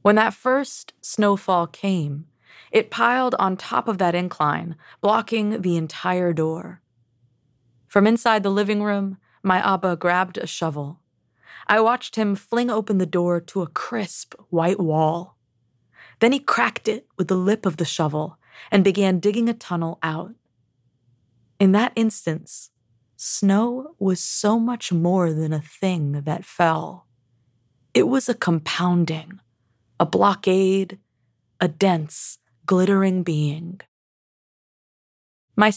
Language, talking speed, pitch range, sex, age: English, 130 wpm, 150-205 Hz, female, 20-39